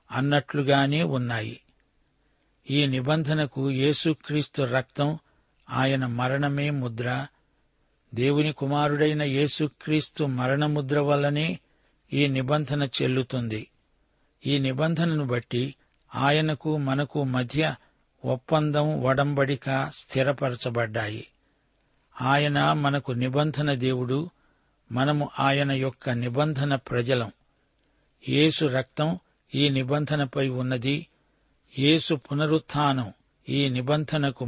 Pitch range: 130-150 Hz